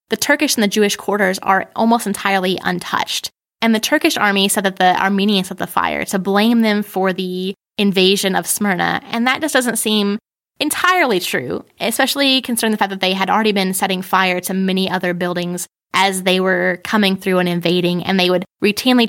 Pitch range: 190-220 Hz